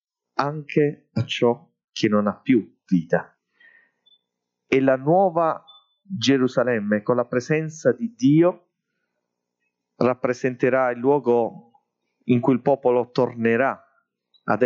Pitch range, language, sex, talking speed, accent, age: 100-135 Hz, Italian, male, 105 wpm, native, 40-59